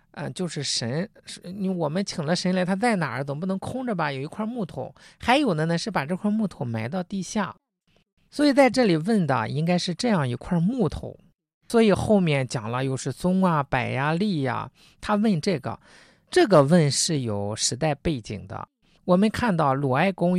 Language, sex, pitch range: Chinese, male, 135-205 Hz